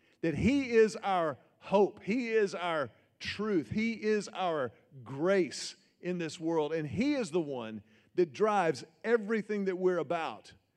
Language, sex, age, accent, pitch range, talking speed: English, male, 40-59, American, 170-220 Hz, 150 wpm